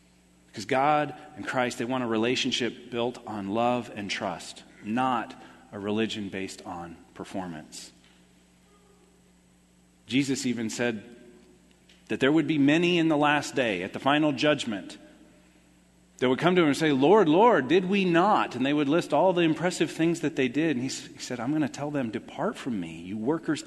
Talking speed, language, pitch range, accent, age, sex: 185 wpm, English, 110-150 Hz, American, 40-59, male